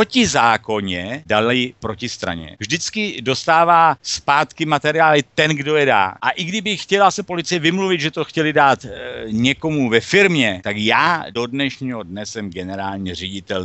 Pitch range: 105-145 Hz